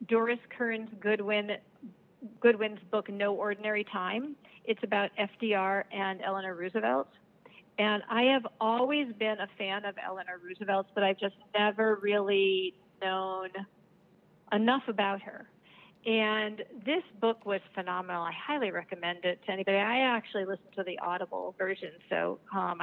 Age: 50-69